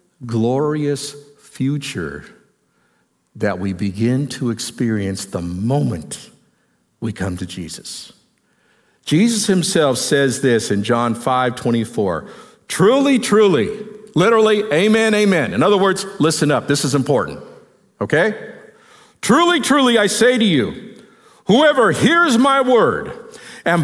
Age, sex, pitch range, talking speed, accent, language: 50-69, male, 135-215 Hz, 115 wpm, American, English